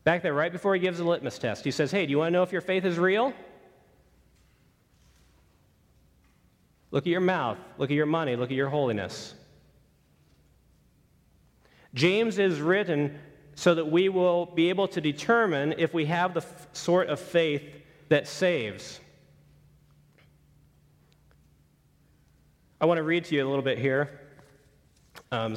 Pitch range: 135-180 Hz